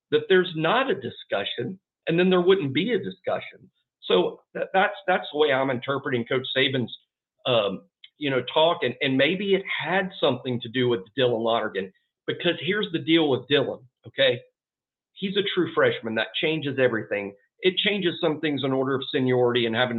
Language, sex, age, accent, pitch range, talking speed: English, male, 50-69, American, 130-190 Hz, 185 wpm